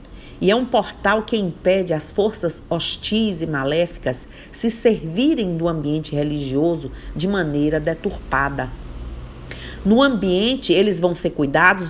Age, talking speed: 40-59, 125 wpm